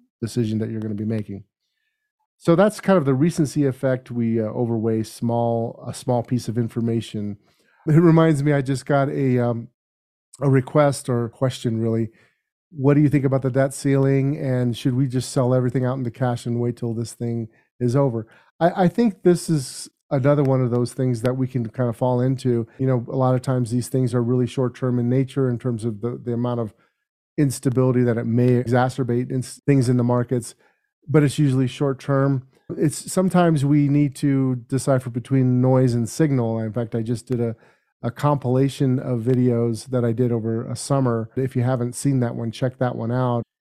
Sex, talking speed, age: male, 205 wpm, 30-49